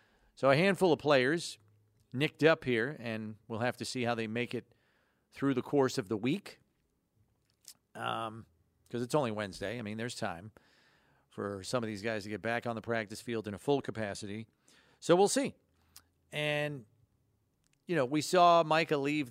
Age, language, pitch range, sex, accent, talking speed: 40-59, English, 110-140 Hz, male, American, 180 wpm